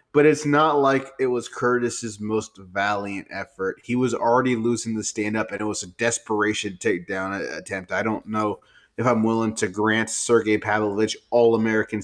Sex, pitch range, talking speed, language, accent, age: male, 110-135 Hz, 170 wpm, English, American, 20-39